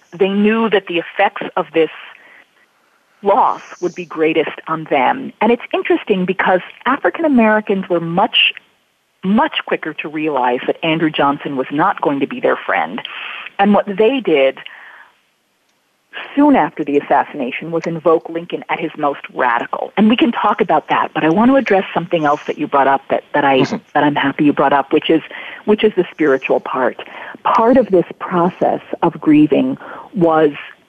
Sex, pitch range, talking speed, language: female, 155-230 Hz, 175 wpm, English